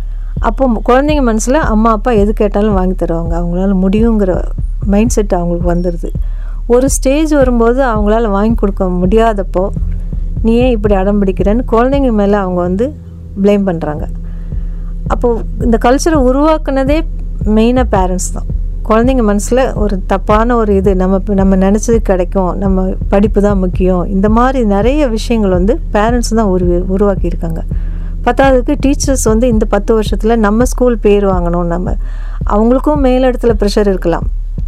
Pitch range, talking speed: 185-235 Hz, 135 wpm